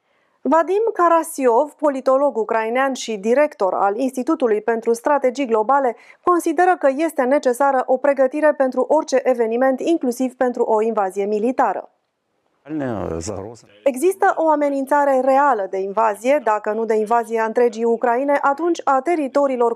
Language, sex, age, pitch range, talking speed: Romanian, female, 30-49, 235-290 Hz, 125 wpm